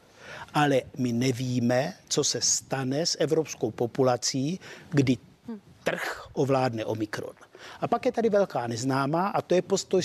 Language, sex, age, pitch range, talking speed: Czech, male, 50-69, 130-175 Hz, 135 wpm